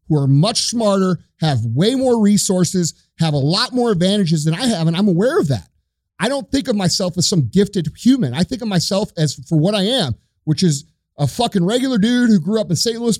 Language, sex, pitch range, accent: English, male, 145-190 Hz, American